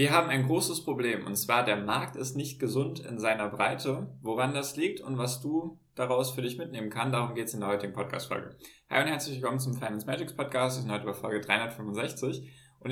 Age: 10-29